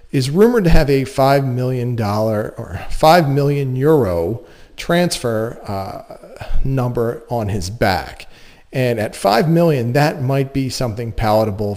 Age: 40-59